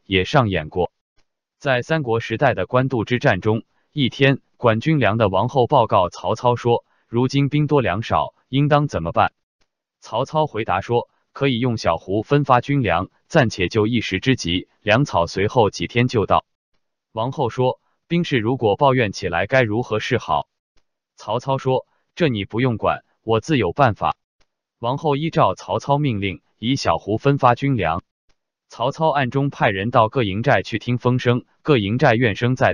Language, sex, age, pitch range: Chinese, male, 20-39, 110-140 Hz